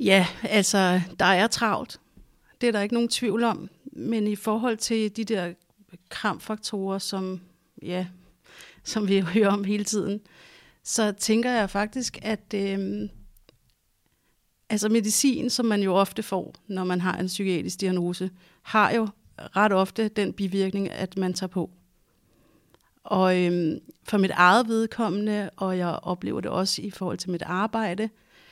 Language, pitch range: Danish, 180-215 Hz